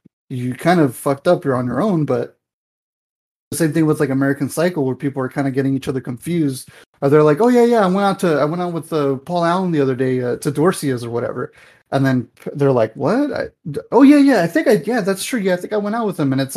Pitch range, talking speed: 130-155 Hz, 280 wpm